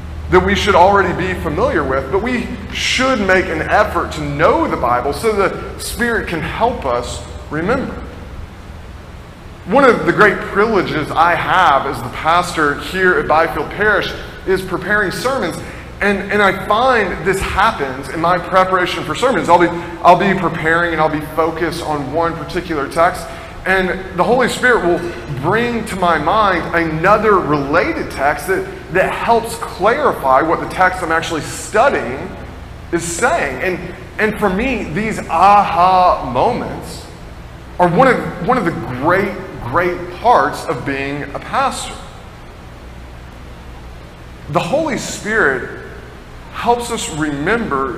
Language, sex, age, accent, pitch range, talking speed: English, male, 30-49, American, 115-185 Hz, 140 wpm